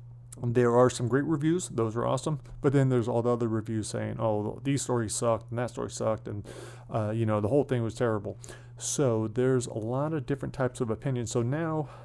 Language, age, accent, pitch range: English, 30-49, American, 110-125 Hz